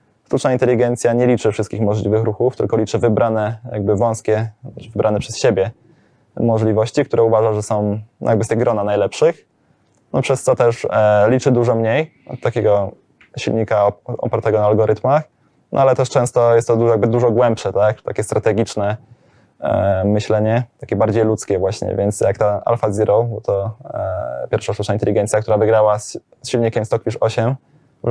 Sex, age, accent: male, 20-39, native